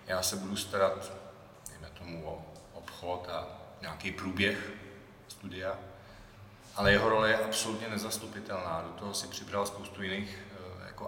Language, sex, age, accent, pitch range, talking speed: Czech, male, 40-59, native, 95-105 Hz, 135 wpm